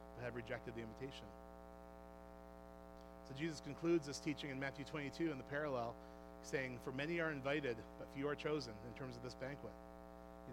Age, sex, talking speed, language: 40-59, male, 170 wpm, English